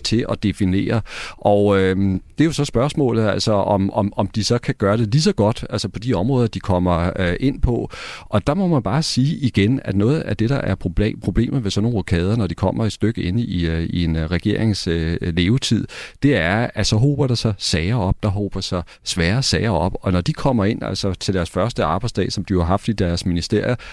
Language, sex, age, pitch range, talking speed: Danish, male, 40-59, 95-120 Hz, 240 wpm